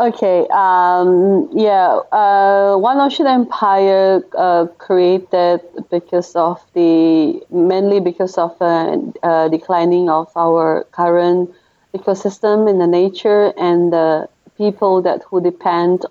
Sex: female